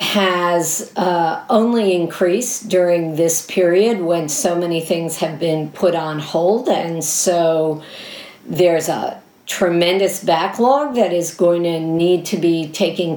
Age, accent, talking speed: 50-69, American, 135 wpm